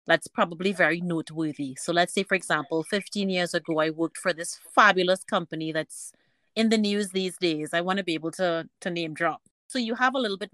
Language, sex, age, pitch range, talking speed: English, female, 30-49, 160-205 Hz, 220 wpm